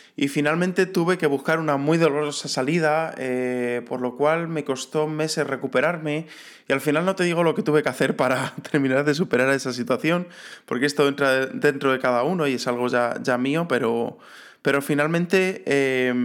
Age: 20-39